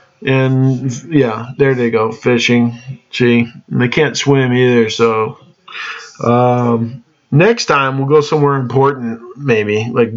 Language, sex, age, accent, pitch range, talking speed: English, male, 20-39, American, 120-160 Hz, 125 wpm